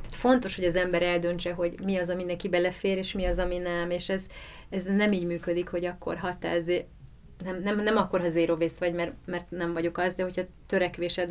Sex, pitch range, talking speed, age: female, 170-195 Hz, 225 wpm, 30-49